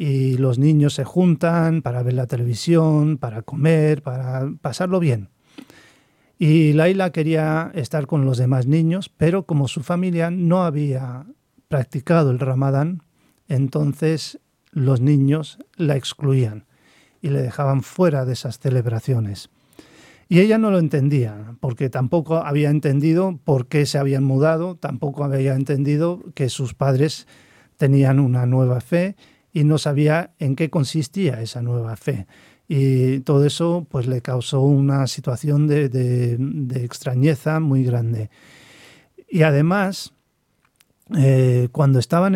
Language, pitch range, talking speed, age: Spanish, 130-160 Hz, 130 wpm, 40-59